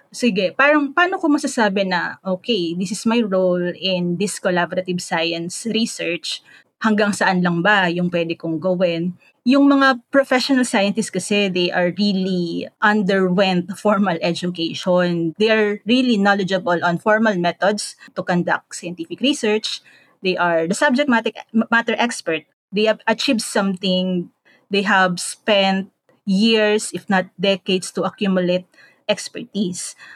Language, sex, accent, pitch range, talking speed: English, female, Filipino, 180-235 Hz, 130 wpm